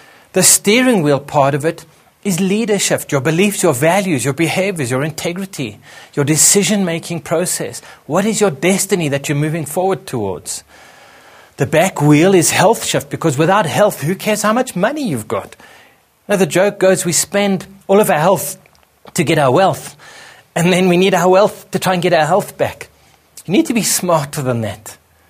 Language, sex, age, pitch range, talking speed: English, male, 30-49, 145-195 Hz, 185 wpm